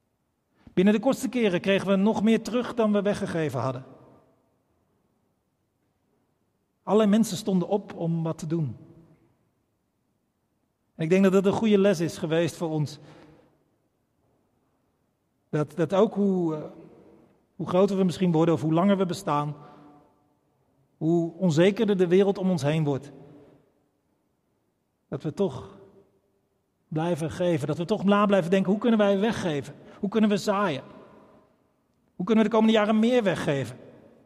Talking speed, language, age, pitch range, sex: 145 wpm, Dutch, 40-59, 150-200 Hz, male